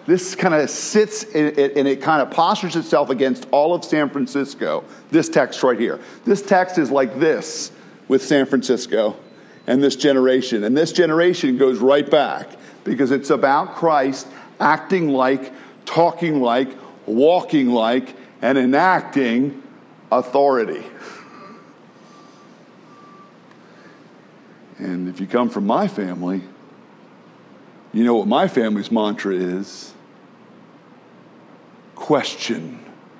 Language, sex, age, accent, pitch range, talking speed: English, male, 50-69, American, 115-150 Hz, 120 wpm